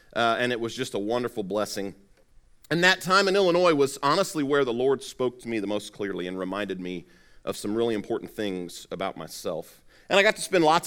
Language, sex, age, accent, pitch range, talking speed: English, male, 40-59, American, 115-165 Hz, 220 wpm